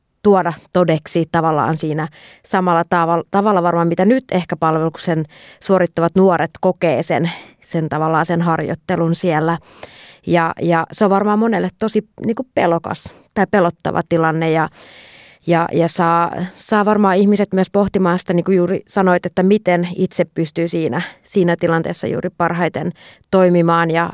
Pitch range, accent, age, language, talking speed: 165-185 Hz, native, 30-49, Finnish, 145 wpm